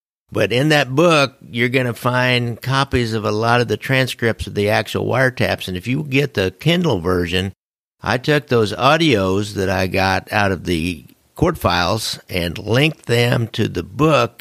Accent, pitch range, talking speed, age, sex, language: American, 100-130 Hz, 185 wpm, 50-69, male, English